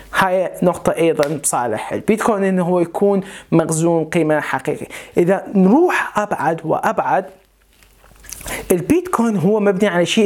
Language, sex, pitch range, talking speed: Arabic, male, 165-215 Hz, 115 wpm